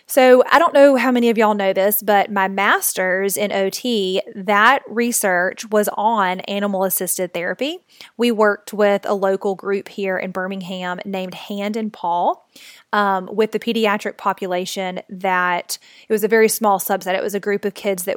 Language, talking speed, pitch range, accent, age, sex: English, 175 wpm, 190-220 Hz, American, 20-39, female